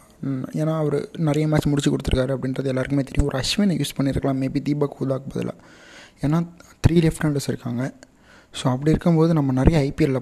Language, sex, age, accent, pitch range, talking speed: Tamil, male, 20-39, native, 135-155 Hz, 165 wpm